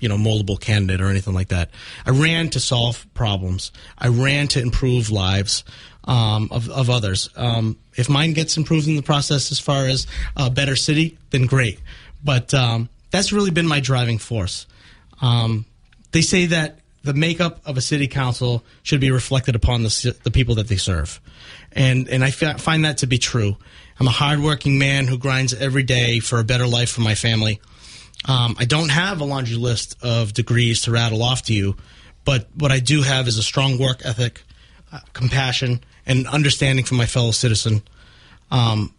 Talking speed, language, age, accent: 190 wpm, English, 30-49, American